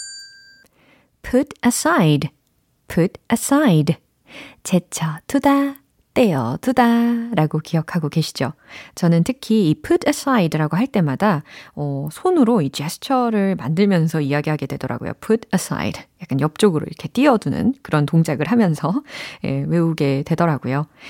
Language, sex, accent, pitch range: Korean, female, native, 155-240 Hz